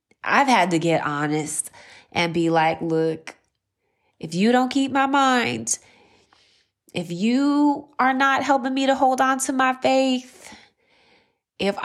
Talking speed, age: 140 wpm, 20-39